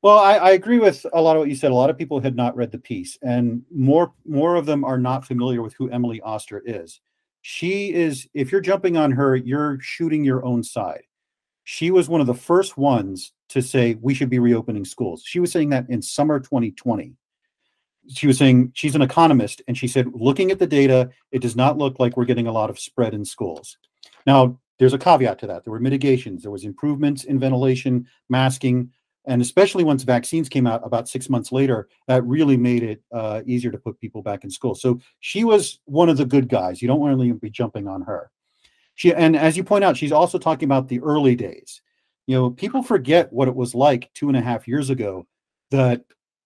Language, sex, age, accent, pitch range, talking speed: English, male, 40-59, American, 125-155 Hz, 225 wpm